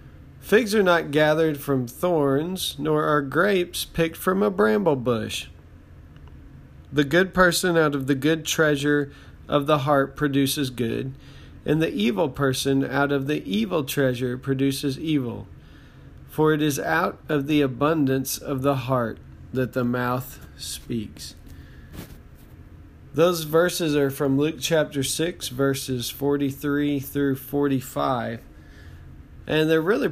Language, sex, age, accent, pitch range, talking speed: English, male, 40-59, American, 130-150 Hz, 130 wpm